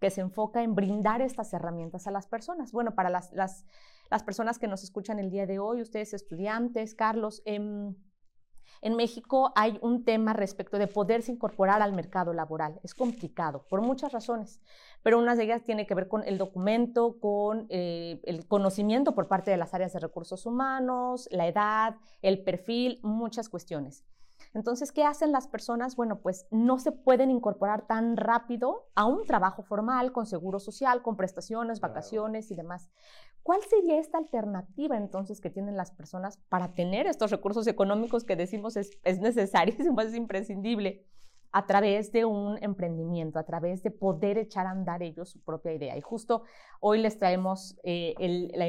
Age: 30-49